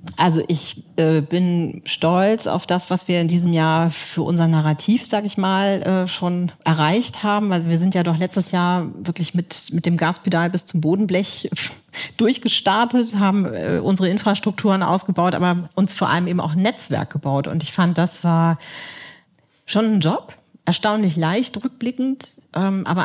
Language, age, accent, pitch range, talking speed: German, 40-59, German, 165-190 Hz, 165 wpm